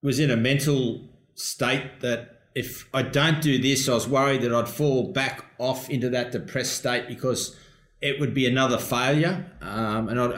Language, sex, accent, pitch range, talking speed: English, male, Australian, 115-140 Hz, 185 wpm